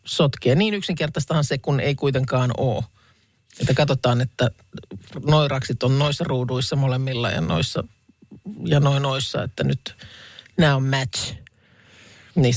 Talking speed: 130 wpm